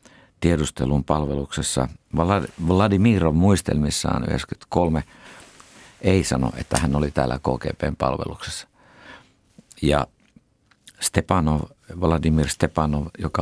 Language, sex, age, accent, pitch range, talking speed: Finnish, male, 50-69, native, 75-90 Hz, 75 wpm